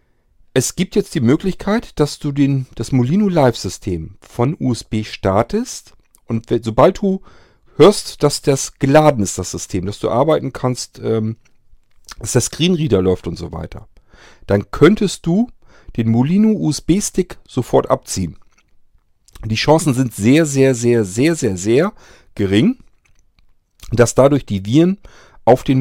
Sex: male